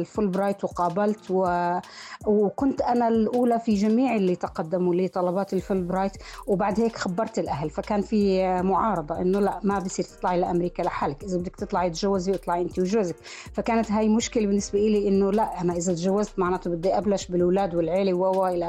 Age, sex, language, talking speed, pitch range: 30-49, female, Arabic, 165 wpm, 185-210 Hz